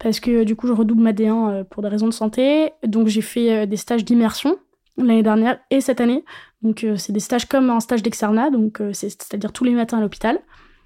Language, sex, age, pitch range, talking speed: French, female, 20-39, 220-250 Hz, 220 wpm